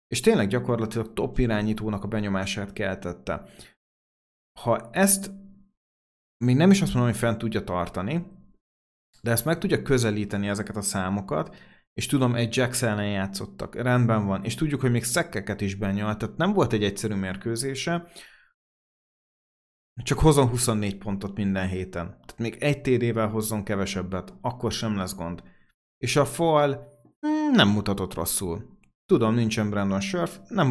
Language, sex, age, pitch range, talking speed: Hungarian, male, 30-49, 100-125 Hz, 145 wpm